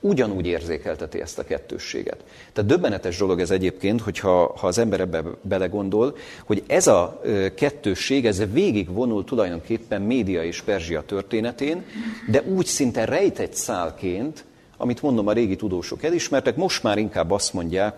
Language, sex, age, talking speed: Hungarian, male, 40-59, 145 wpm